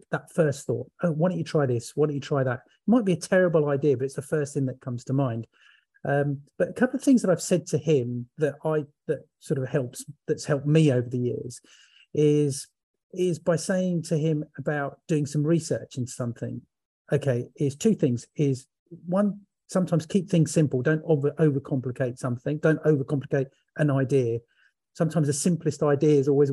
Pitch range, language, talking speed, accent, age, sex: 130-160 Hz, English, 195 wpm, British, 40-59, male